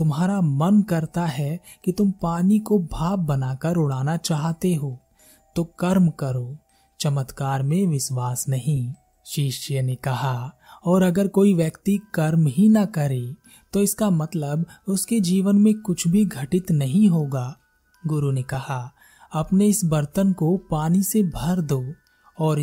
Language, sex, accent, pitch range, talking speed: Hindi, male, native, 140-185 Hz, 145 wpm